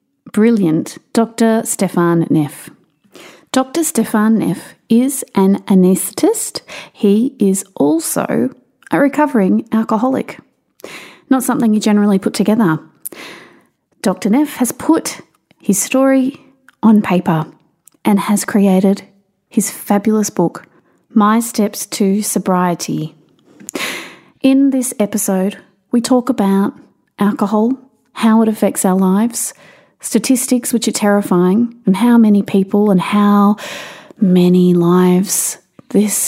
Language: English